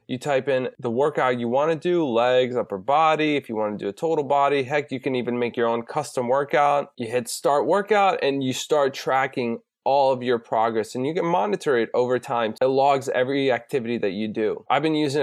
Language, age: English, 20-39